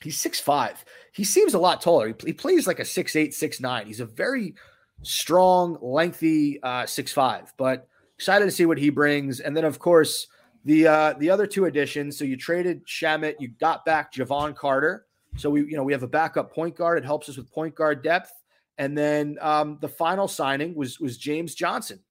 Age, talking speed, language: 30-49, 210 wpm, English